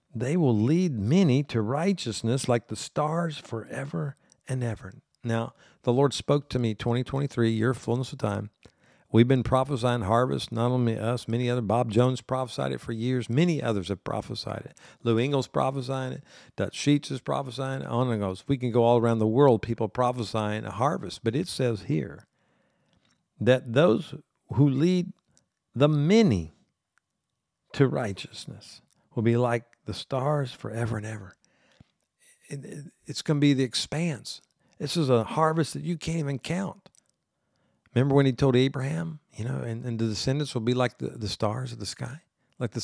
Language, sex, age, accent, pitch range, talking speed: English, male, 50-69, American, 115-150 Hz, 170 wpm